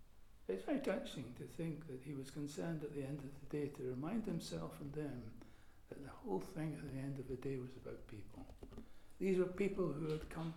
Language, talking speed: English, 220 wpm